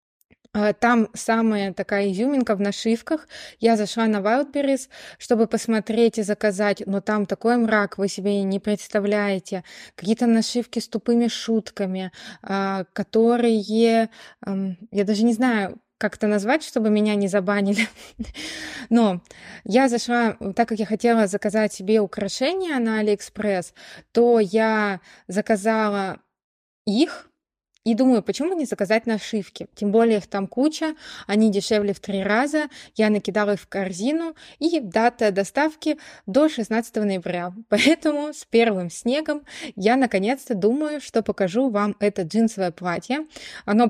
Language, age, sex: Russian, 20-39, female